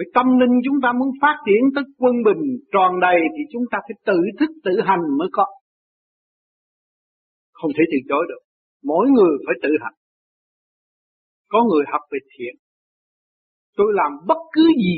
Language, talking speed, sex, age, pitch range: Vietnamese, 170 wpm, male, 60-79, 160-255 Hz